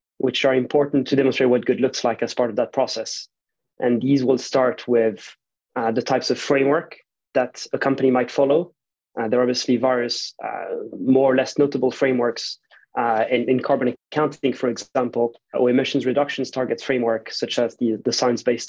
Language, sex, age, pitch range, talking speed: English, male, 20-39, 120-135 Hz, 185 wpm